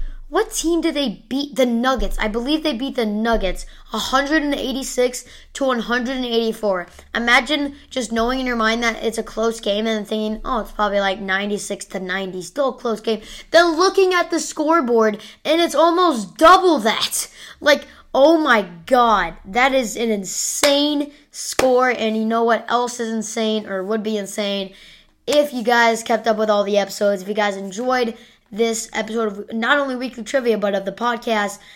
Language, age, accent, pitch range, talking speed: English, 20-39, American, 215-295 Hz, 180 wpm